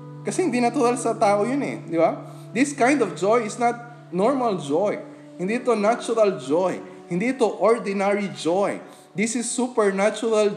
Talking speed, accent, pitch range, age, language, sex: 160 wpm, native, 155-215 Hz, 20-39, Filipino, male